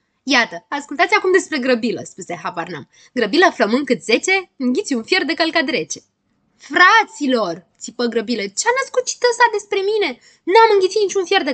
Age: 20-39